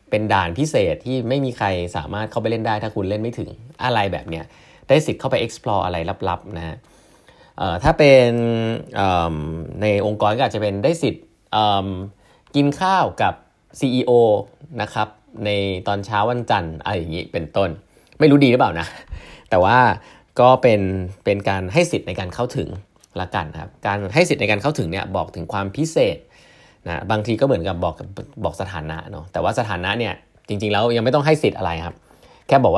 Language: Thai